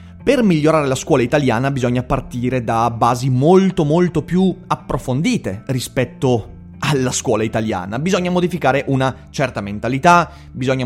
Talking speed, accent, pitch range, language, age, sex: 125 wpm, native, 120-155 Hz, Italian, 30-49, male